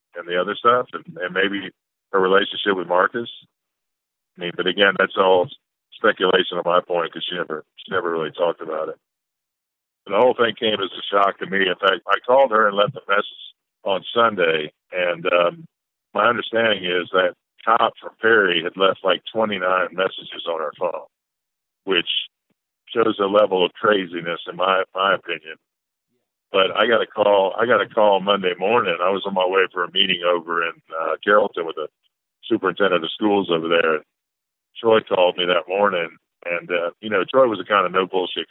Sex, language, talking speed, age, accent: male, English, 190 wpm, 50-69, American